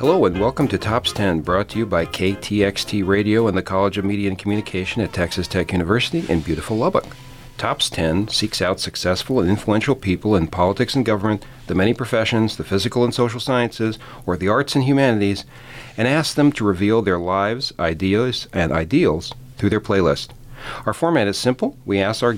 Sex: male